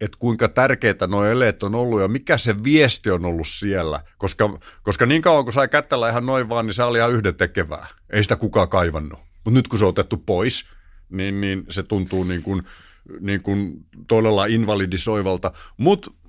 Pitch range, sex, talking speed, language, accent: 95-125 Hz, male, 190 wpm, Finnish, native